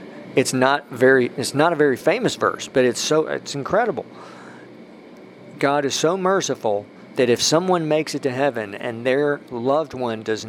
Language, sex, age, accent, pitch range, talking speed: English, male, 50-69, American, 115-145 Hz, 170 wpm